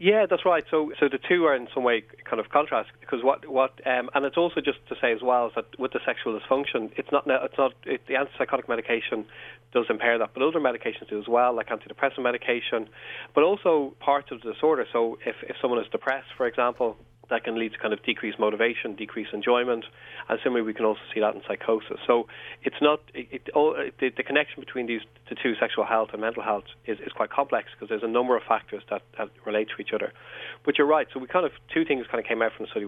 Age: 30-49